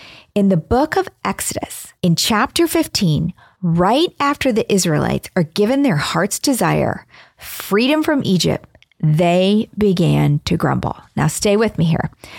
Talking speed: 140 wpm